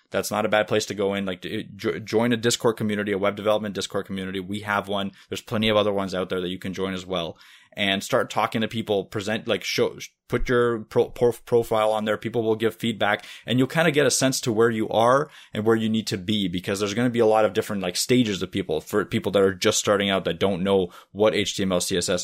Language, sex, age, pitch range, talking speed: English, male, 20-39, 95-115 Hz, 255 wpm